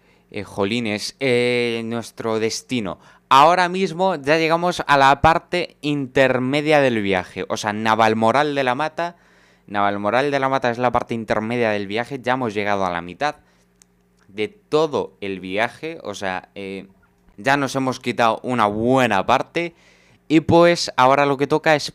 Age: 20-39